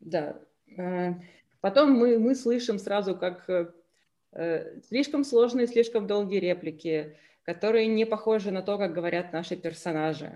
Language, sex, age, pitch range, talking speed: Russian, female, 20-39, 170-220 Hz, 120 wpm